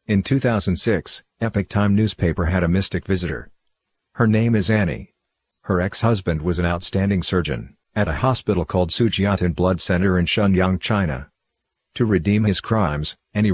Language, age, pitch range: English, 50-69, 90-110 Hz